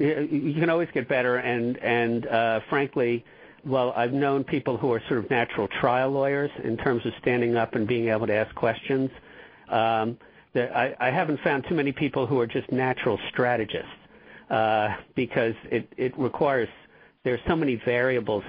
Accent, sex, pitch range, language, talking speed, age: American, male, 115-140 Hz, English, 175 wpm, 50-69